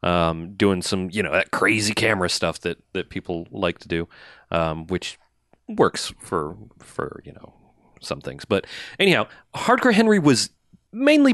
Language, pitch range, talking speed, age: English, 95-125 Hz, 160 wpm, 30-49